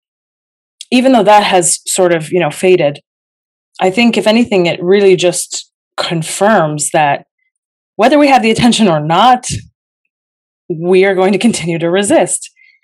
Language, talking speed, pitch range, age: English, 150 wpm, 170-205 Hz, 30-49